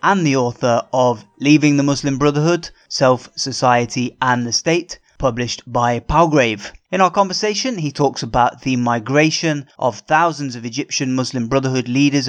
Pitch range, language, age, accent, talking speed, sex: 125-155 Hz, English, 20-39, British, 150 wpm, male